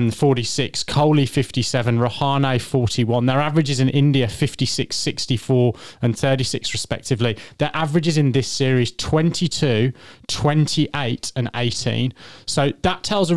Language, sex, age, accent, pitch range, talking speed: English, male, 20-39, British, 120-145 Hz, 120 wpm